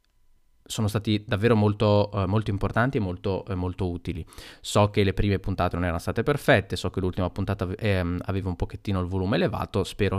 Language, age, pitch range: Italian, 20-39, 90-115 Hz